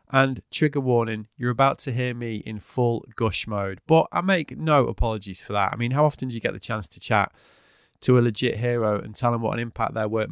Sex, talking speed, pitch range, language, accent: male, 245 wpm, 105-130 Hz, English, British